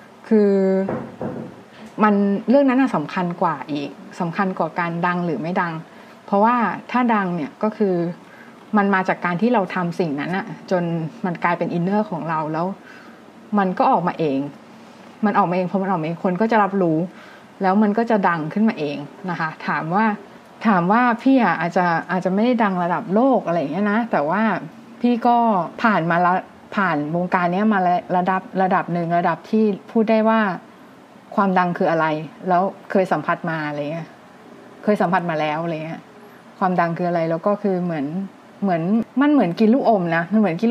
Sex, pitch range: female, 175-225 Hz